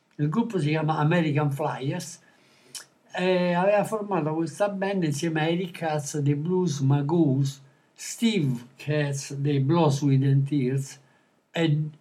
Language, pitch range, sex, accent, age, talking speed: Italian, 145-175 Hz, male, native, 60-79, 130 wpm